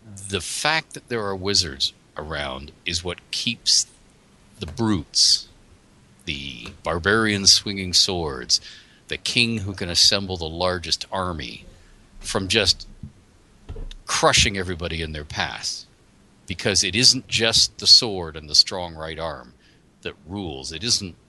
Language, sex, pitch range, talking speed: English, male, 85-110 Hz, 130 wpm